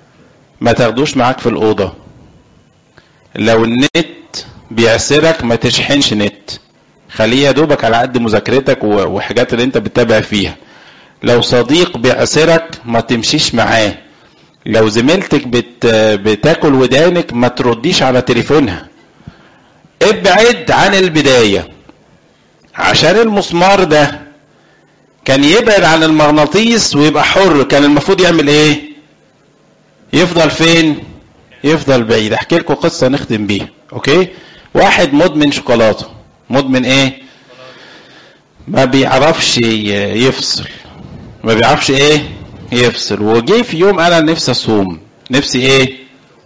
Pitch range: 115-150 Hz